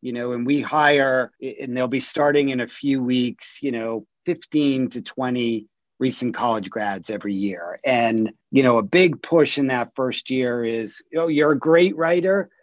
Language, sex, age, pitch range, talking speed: English, male, 40-59, 120-150 Hz, 185 wpm